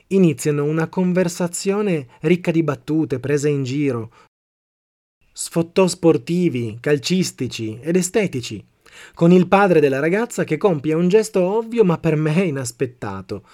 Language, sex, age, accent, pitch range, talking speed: Italian, male, 30-49, native, 125-175 Hz, 125 wpm